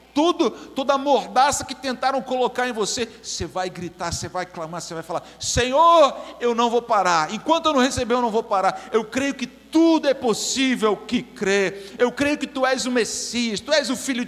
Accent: Brazilian